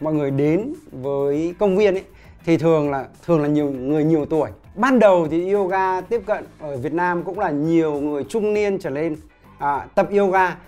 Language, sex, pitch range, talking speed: Vietnamese, male, 150-190 Hz, 200 wpm